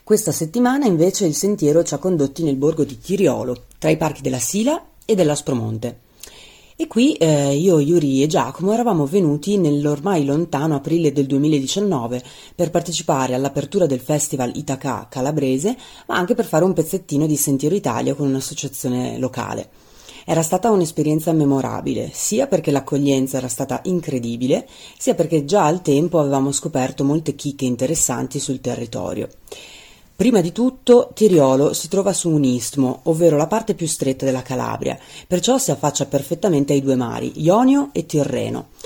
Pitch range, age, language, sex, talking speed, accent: 135-180 Hz, 30-49, Italian, female, 155 wpm, native